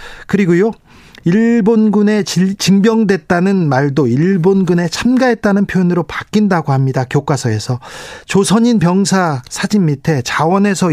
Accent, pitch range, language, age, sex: native, 150-215 Hz, Korean, 40-59, male